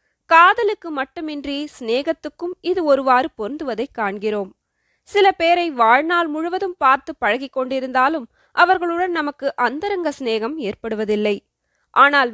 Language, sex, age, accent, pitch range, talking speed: Tamil, female, 20-39, native, 245-335 Hz, 90 wpm